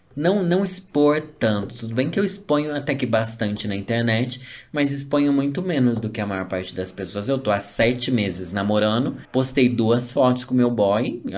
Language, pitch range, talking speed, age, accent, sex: Portuguese, 105-135 Hz, 205 wpm, 20-39, Brazilian, male